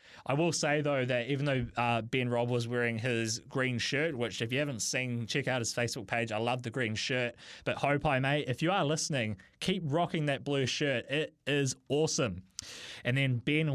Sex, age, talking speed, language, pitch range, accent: male, 20-39, 215 wpm, English, 130-160 Hz, Australian